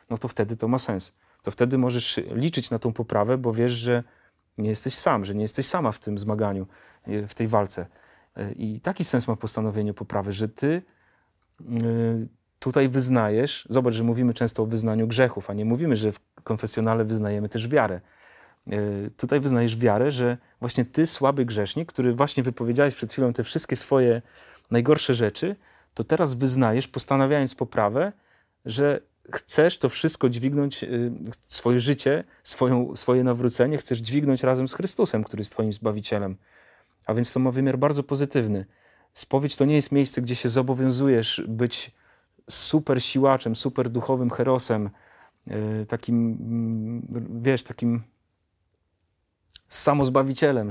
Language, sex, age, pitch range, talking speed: Polish, male, 40-59, 110-135 Hz, 145 wpm